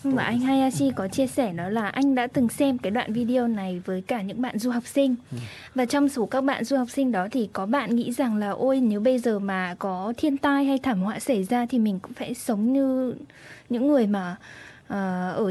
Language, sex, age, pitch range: Japanese, female, 10-29, 205-265 Hz